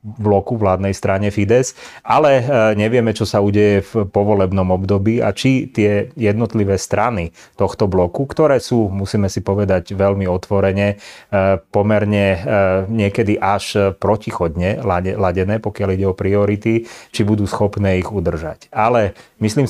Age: 30-49